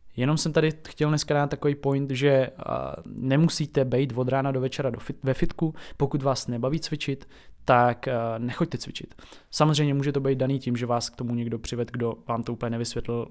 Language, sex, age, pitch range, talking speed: Czech, male, 20-39, 120-140 Hz, 195 wpm